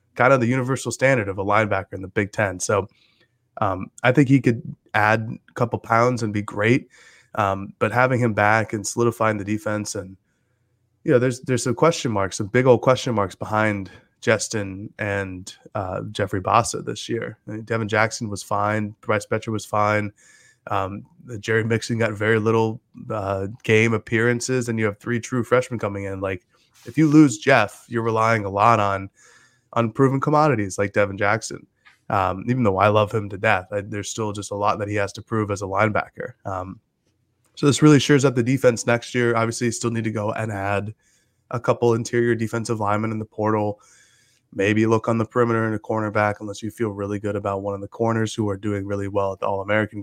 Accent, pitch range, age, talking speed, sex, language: American, 105-120 Hz, 20-39, 205 wpm, male, English